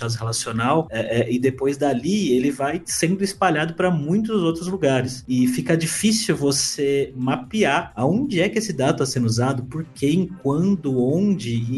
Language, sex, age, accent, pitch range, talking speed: Portuguese, male, 30-49, Brazilian, 120-170 Hz, 165 wpm